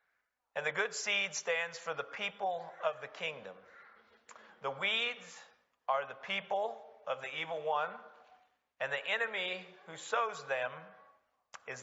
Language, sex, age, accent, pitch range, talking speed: English, male, 40-59, American, 150-220 Hz, 135 wpm